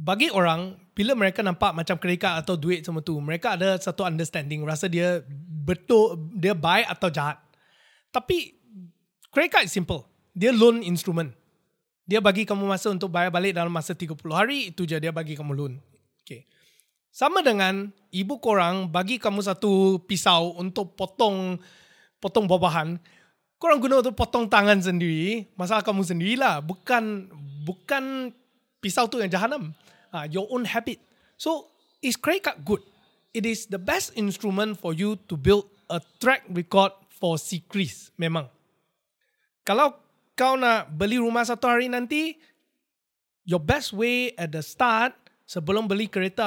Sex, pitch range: male, 175-235 Hz